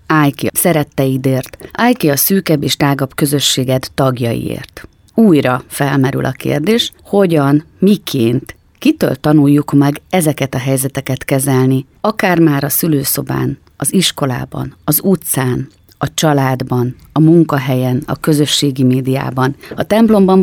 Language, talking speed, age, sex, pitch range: Hungarian, 125 wpm, 30-49, female, 140-175 Hz